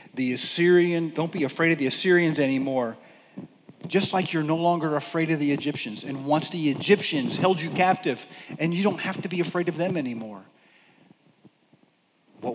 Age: 40-59